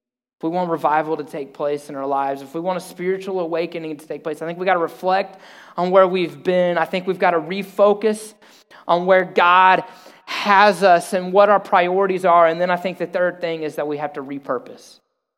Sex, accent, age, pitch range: male, American, 20-39, 170-205 Hz